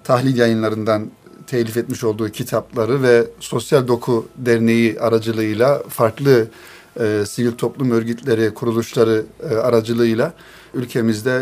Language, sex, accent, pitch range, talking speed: Turkish, male, native, 115-135 Hz, 105 wpm